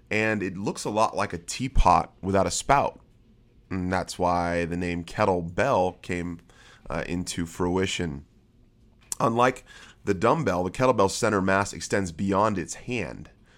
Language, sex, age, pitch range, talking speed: English, male, 30-49, 90-105 Hz, 140 wpm